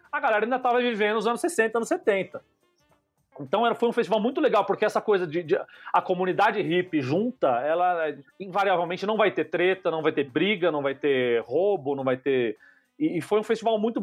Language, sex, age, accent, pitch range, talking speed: Portuguese, male, 30-49, Brazilian, 140-215 Hz, 210 wpm